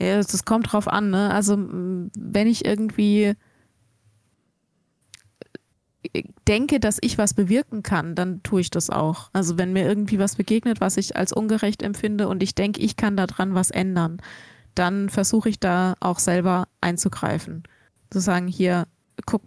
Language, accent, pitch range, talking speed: German, German, 180-205 Hz, 155 wpm